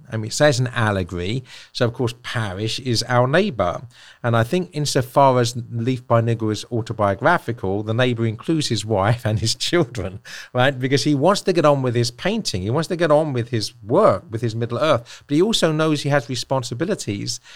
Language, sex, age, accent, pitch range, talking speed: English, male, 50-69, British, 110-135 Hz, 205 wpm